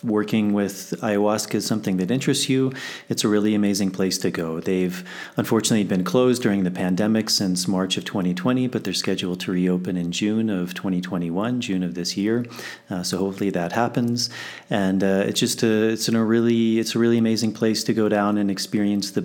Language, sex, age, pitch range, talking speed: English, male, 30-49, 90-105 Hz, 200 wpm